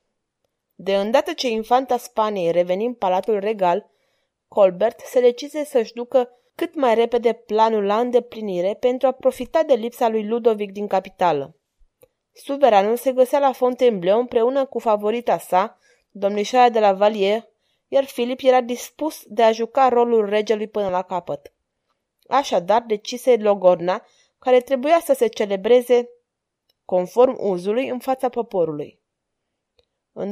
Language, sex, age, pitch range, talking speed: Romanian, female, 20-39, 205-255 Hz, 135 wpm